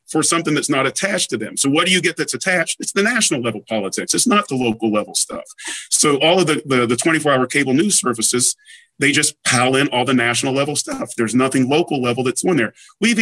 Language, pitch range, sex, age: English, 130-170 Hz, male, 40-59